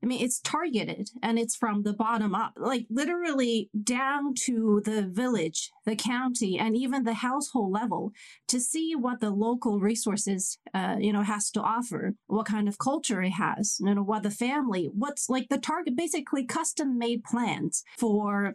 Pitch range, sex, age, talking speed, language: 210-260 Hz, female, 30-49, 175 wpm, English